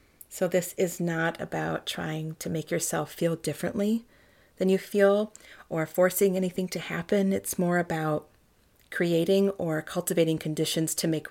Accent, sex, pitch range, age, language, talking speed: American, female, 155-185 Hz, 30-49, English, 150 wpm